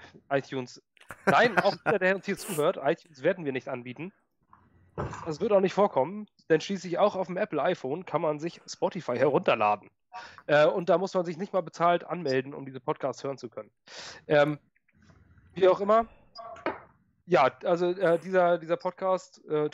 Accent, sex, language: German, male, German